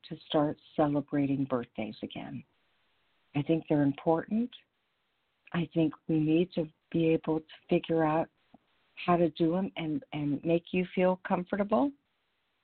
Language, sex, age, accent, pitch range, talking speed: English, female, 50-69, American, 145-175 Hz, 140 wpm